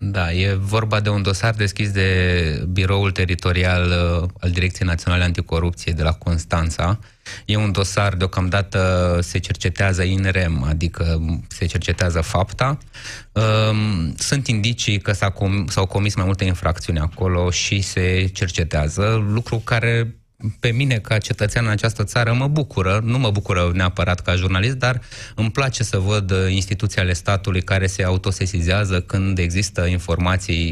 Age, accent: 20-39, native